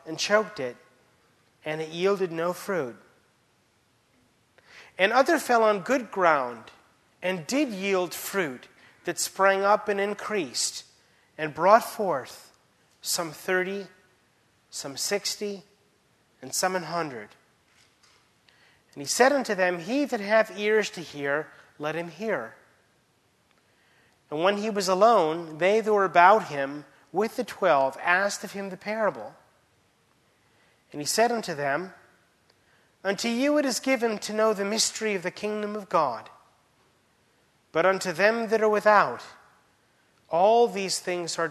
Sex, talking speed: male, 135 wpm